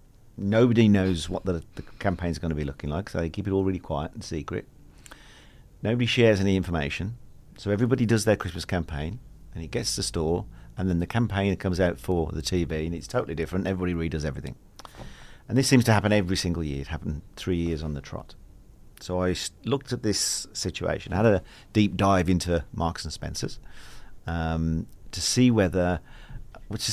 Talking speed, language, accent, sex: 190 wpm, English, British, male